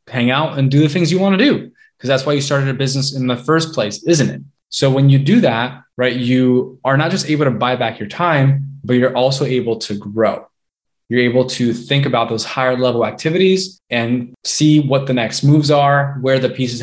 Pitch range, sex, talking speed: 115-140 Hz, male, 230 wpm